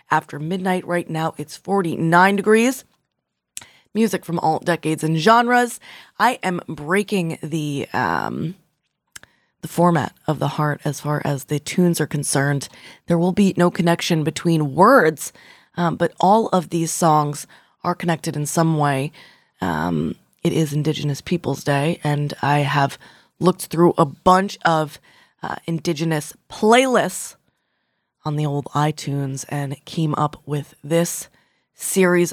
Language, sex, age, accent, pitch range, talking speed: English, female, 20-39, American, 150-180 Hz, 140 wpm